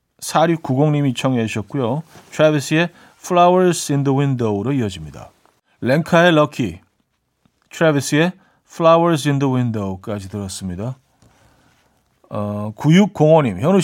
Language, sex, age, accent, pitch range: Korean, male, 40-59, native, 125-175 Hz